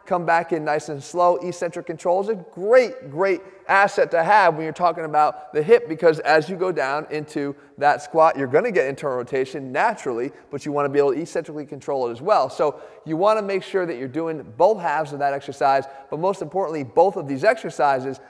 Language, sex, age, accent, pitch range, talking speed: English, male, 30-49, American, 150-195 Hz, 225 wpm